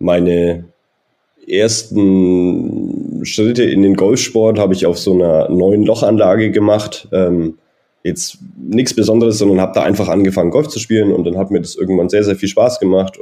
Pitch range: 90-110 Hz